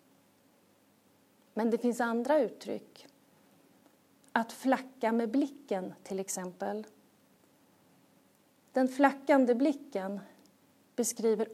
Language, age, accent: Swedish, 40-59, native